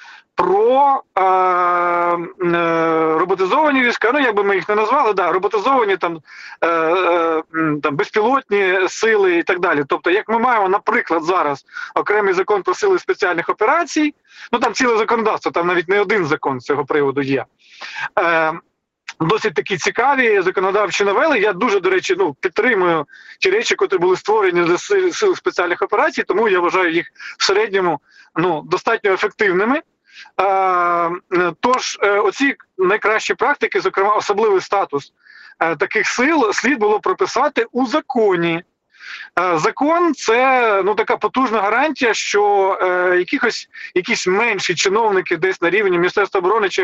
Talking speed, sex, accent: 140 wpm, male, native